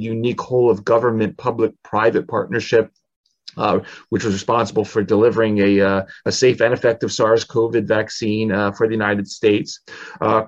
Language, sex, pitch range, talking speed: English, male, 100-120 Hz, 160 wpm